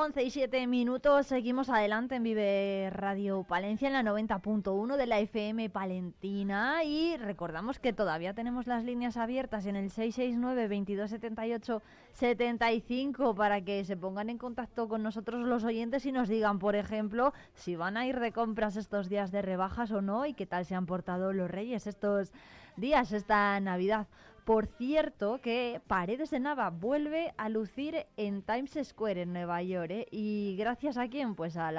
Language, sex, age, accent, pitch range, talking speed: Spanish, female, 20-39, Spanish, 200-245 Hz, 170 wpm